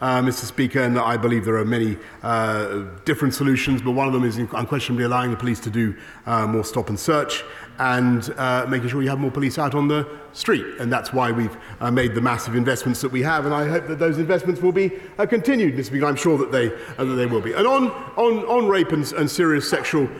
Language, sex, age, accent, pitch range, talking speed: English, male, 40-59, British, 125-160 Hz, 245 wpm